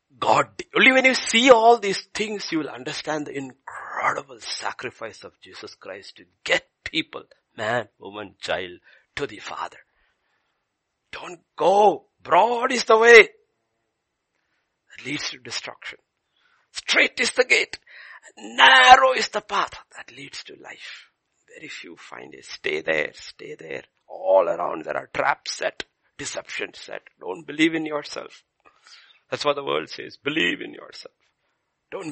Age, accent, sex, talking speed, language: 60-79, Indian, male, 140 wpm, English